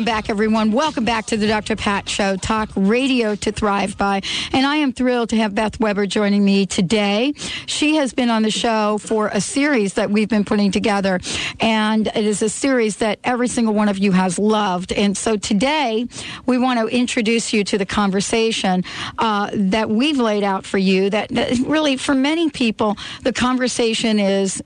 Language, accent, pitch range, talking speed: English, American, 195-235 Hz, 190 wpm